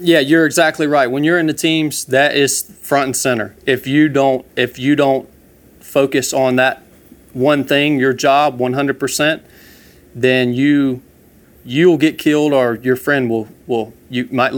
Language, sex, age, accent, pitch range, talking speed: English, male, 40-59, American, 120-145 Hz, 165 wpm